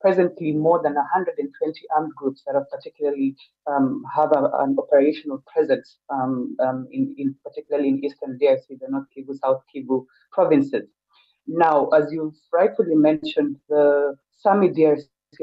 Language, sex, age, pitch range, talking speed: English, female, 30-49, 145-195 Hz, 145 wpm